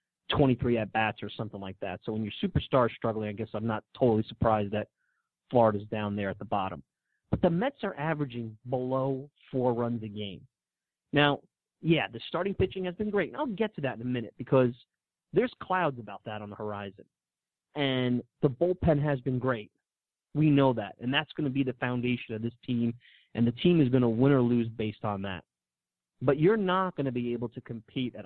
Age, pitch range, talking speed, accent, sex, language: 30-49, 110-135 Hz, 215 wpm, American, male, English